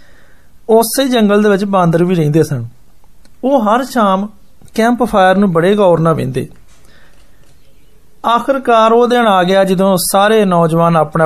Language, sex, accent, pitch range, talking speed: Hindi, male, native, 165-210 Hz, 70 wpm